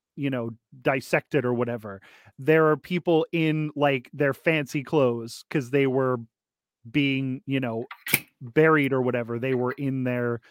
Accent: American